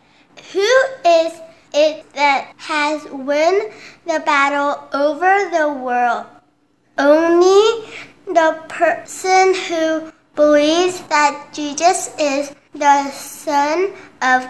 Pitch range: 290-345 Hz